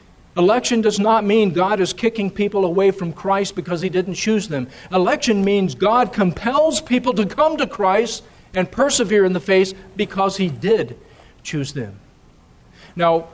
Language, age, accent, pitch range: English, 50-69, American, 155-200 Hz